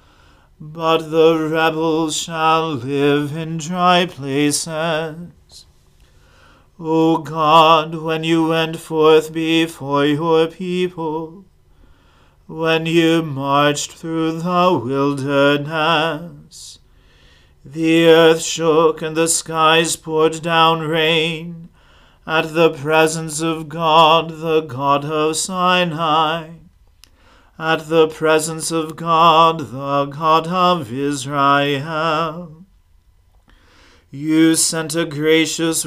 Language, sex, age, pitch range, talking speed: English, male, 40-59, 145-165 Hz, 90 wpm